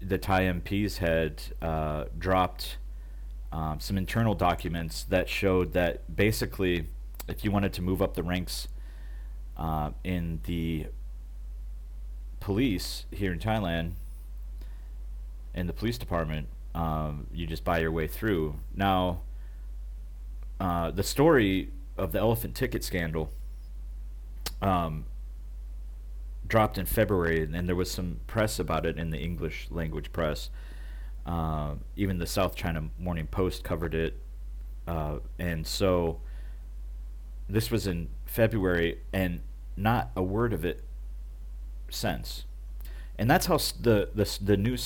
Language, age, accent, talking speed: English, 30-49, American, 125 wpm